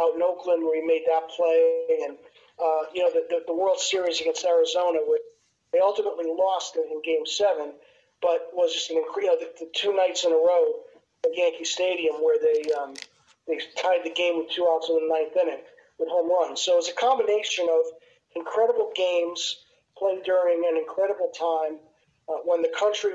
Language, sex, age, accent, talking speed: English, male, 40-59, American, 200 wpm